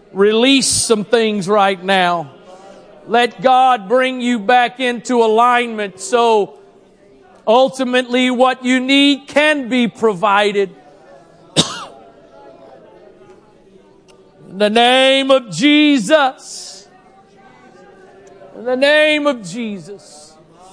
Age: 50-69